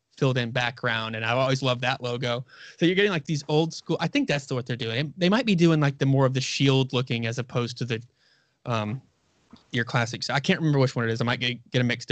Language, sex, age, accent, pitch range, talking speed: English, male, 20-39, American, 125-160 Hz, 265 wpm